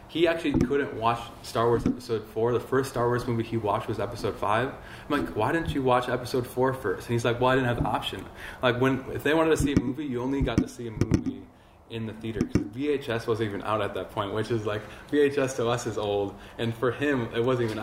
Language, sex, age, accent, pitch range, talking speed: English, male, 20-39, American, 110-135 Hz, 260 wpm